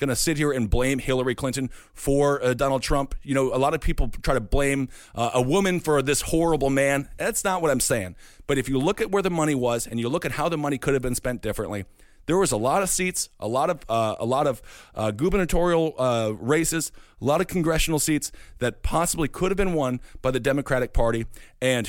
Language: English